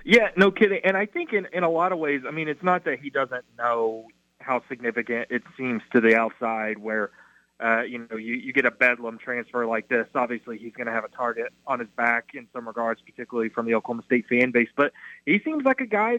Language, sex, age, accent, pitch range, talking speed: English, male, 30-49, American, 120-165 Hz, 240 wpm